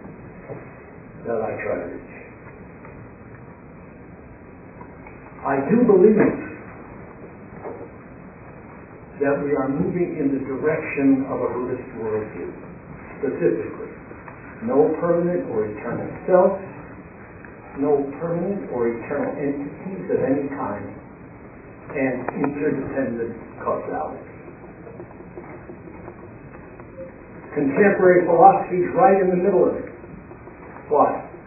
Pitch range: 135-175 Hz